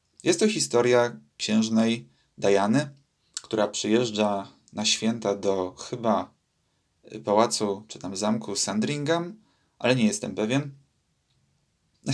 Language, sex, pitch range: Polish, male, 105-135 Hz